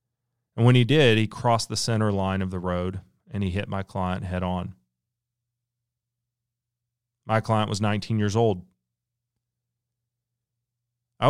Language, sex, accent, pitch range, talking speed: English, male, American, 100-120 Hz, 140 wpm